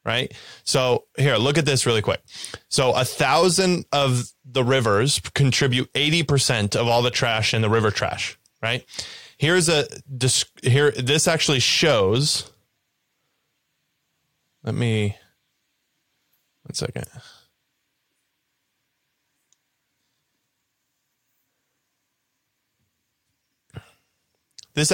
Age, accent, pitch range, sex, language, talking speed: 20-39, American, 115-140 Hz, male, English, 85 wpm